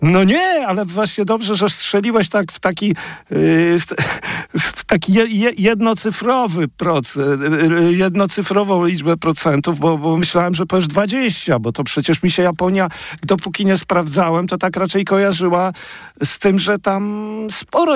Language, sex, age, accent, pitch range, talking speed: Polish, male, 50-69, native, 145-190 Hz, 150 wpm